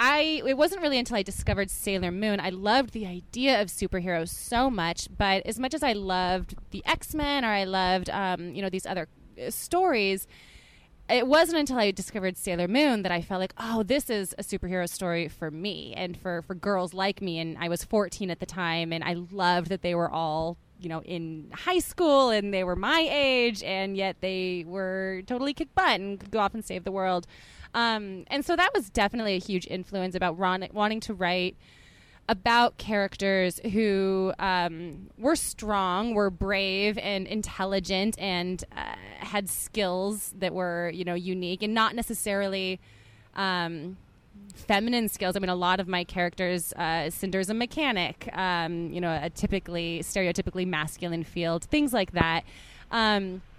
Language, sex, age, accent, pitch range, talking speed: English, female, 20-39, American, 180-220 Hz, 180 wpm